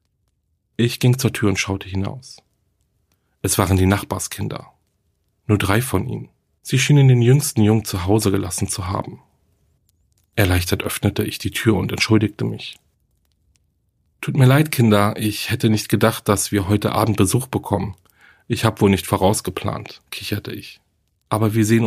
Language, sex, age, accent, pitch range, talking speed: German, male, 40-59, German, 95-120 Hz, 155 wpm